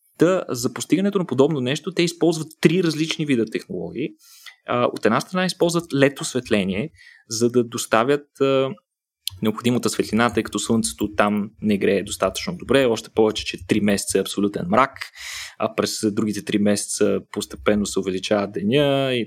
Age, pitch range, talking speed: 20-39, 110-150 Hz, 150 wpm